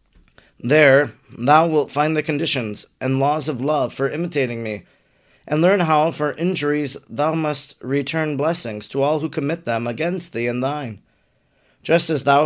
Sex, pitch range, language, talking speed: male, 130-160 Hz, English, 165 wpm